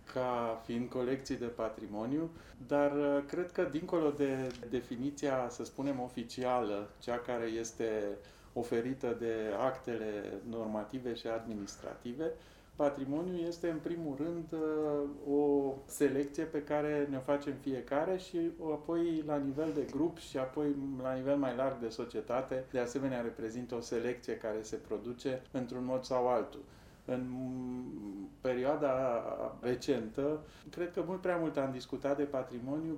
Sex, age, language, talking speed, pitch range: male, 30-49, Romanian, 135 wpm, 125-150 Hz